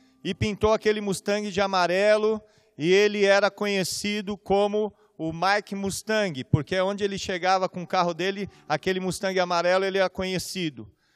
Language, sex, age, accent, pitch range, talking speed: Portuguese, male, 40-59, Brazilian, 180-210 Hz, 150 wpm